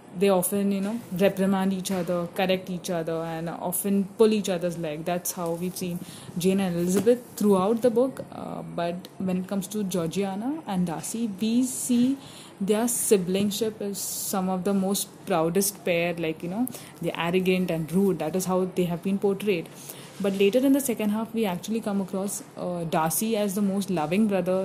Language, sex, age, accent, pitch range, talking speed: English, female, 20-39, Indian, 175-215 Hz, 185 wpm